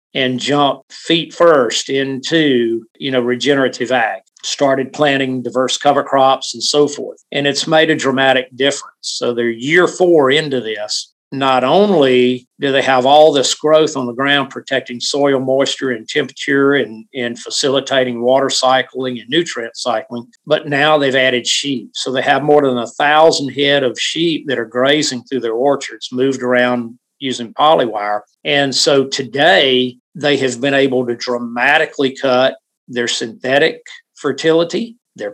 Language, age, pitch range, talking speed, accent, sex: English, 50-69, 125-150 Hz, 155 wpm, American, male